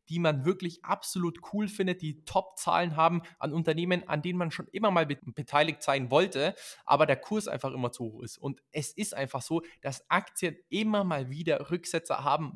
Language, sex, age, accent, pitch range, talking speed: German, male, 20-39, German, 135-170 Hz, 190 wpm